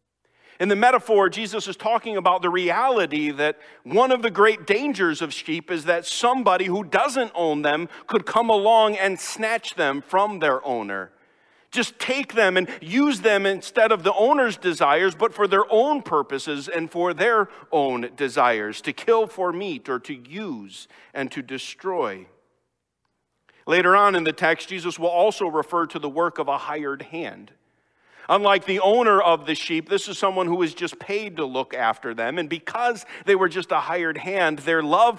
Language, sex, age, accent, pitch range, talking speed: English, male, 50-69, American, 150-195 Hz, 180 wpm